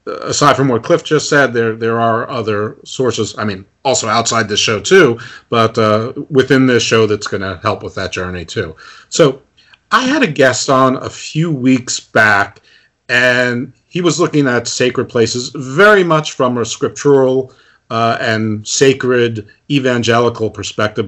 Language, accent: English, American